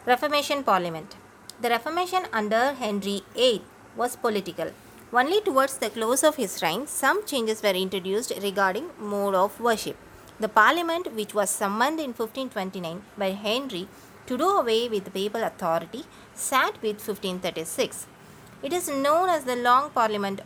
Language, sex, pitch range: Tamil, female, 195-260 Hz